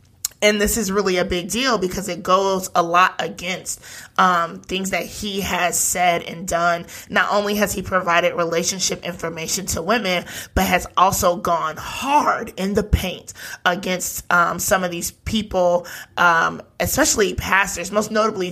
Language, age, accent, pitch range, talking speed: English, 20-39, American, 175-195 Hz, 160 wpm